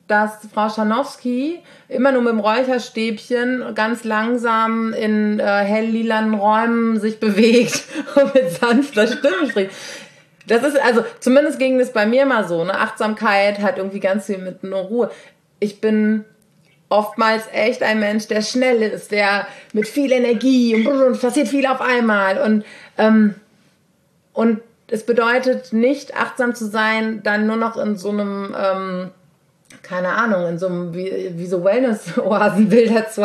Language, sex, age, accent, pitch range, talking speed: German, female, 30-49, German, 205-250 Hz, 155 wpm